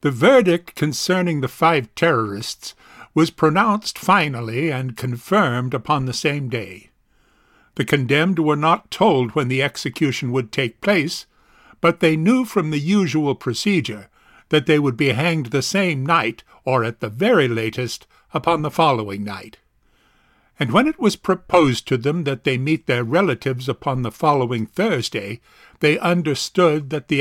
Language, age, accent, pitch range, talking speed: English, 50-69, American, 130-170 Hz, 155 wpm